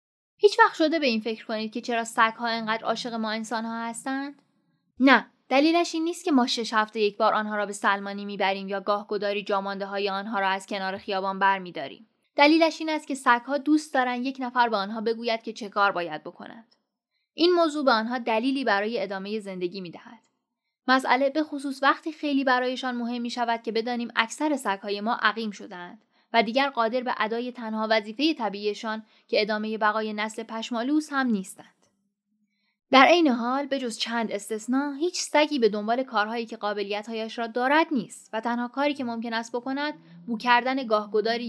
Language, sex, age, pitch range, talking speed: Persian, female, 10-29, 210-265 Hz, 175 wpm